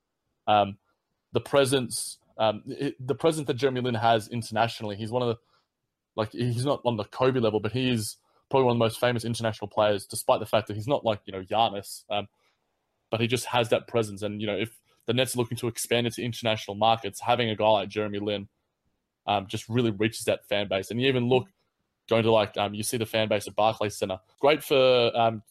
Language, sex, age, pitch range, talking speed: English, male, 20-39, 105-120 Hz, 220 wpm